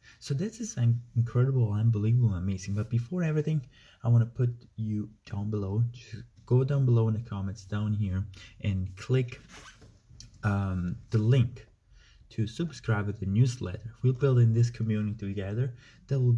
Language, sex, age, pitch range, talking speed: English, male, 20-39, 105-125 Hz, 160 wpm